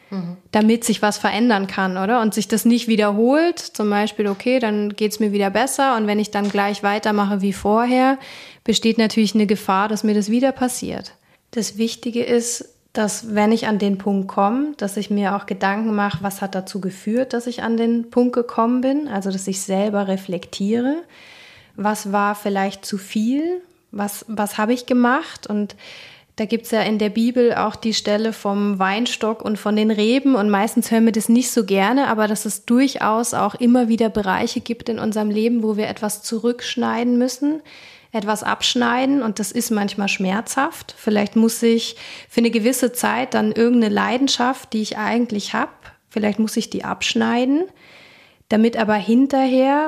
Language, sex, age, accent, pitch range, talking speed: German, female, 20-39, German, 210-245 Hz, 180 wpm